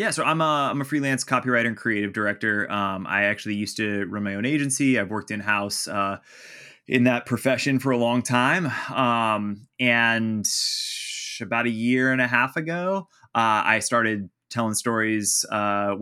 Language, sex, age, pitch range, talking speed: English, male, 20-39, 105-125 Hz, 175 wpm